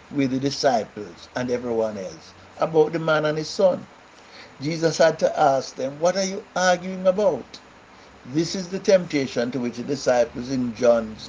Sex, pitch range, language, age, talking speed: male, 120-165 Hz, English, 60-79, 170 wpm